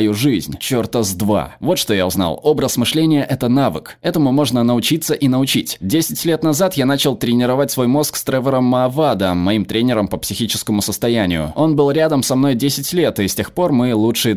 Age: 20-39